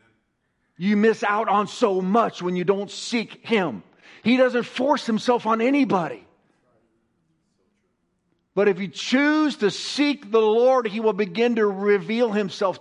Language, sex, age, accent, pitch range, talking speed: English, male, 50-69, American, 165-240 Hz, 145 wpm